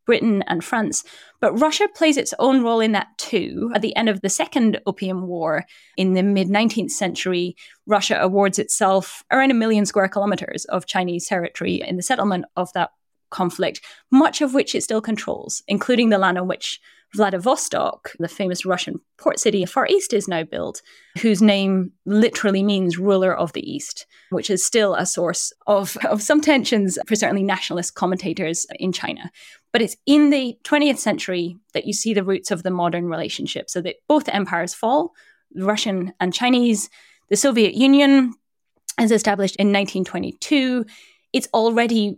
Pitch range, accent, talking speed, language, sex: 185-230 Hz, British, 170 wpm, English, female